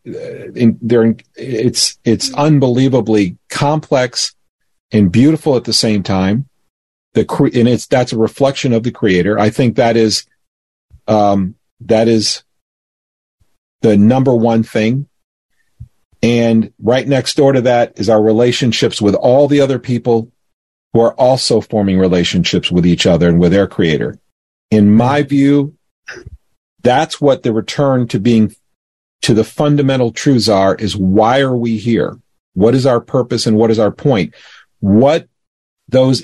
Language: English